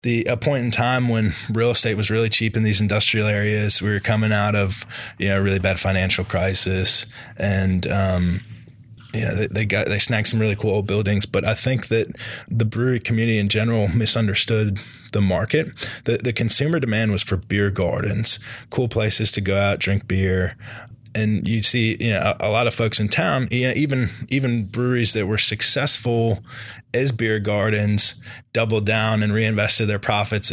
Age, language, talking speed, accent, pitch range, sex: 20-39, English, 190 wpm, American, 105-120 Hz, male